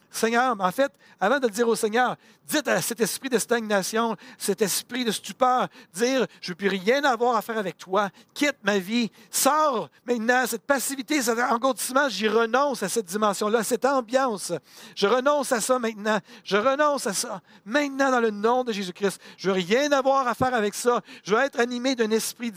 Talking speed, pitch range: 205 wpm, 215-265 Hz